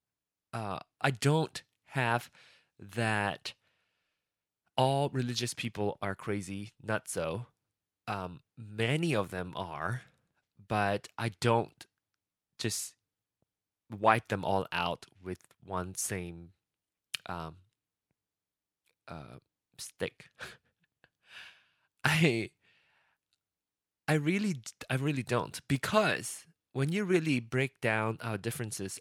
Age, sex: 20-39, male